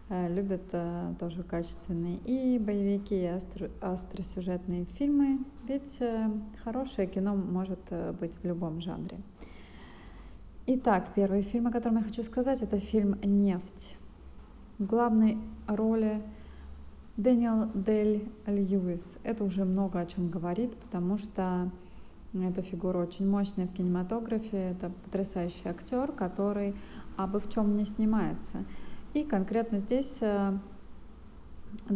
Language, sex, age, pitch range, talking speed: Russian, female, 20-39, 180-210 Hz, 110 wpm